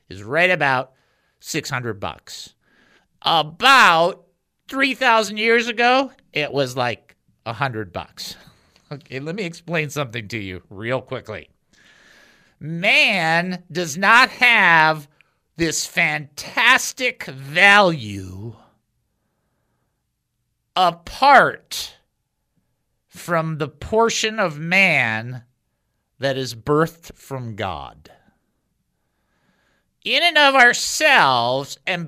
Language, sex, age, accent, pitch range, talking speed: English, male, 50-69, American, 150-235 Hz, 90 wpm